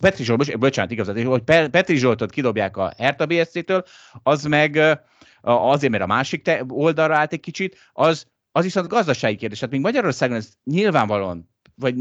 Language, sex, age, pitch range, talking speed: Hungarian, male, 30-49, 110-155 Hz, 160 wpm